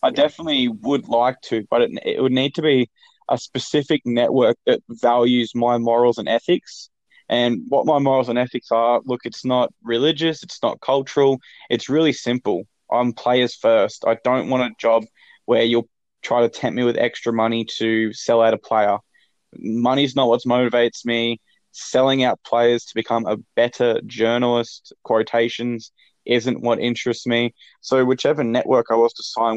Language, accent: English, Australian